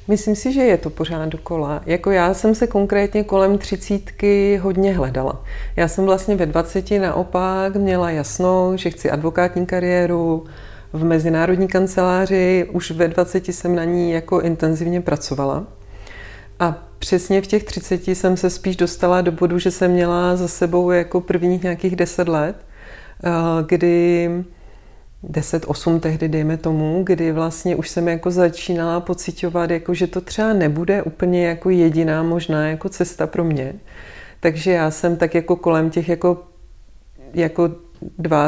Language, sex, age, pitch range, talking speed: Czech, female, 40-59, 160-185 Hz, 150 wpm